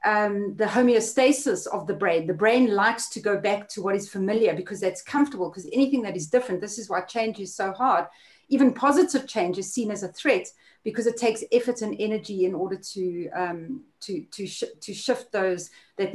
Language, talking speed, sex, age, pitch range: English, 210 wpm, female, 40-59, 200-250 Hz